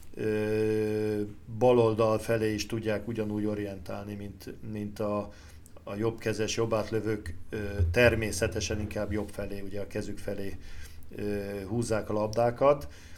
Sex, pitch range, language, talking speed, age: male, 105-120 Hz, Hungarian, 105 wpm, 50-69